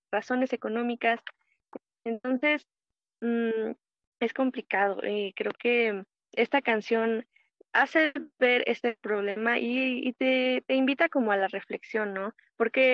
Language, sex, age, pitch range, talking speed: Spanish, female, 20-39, 210-255 Hz, 120 wpm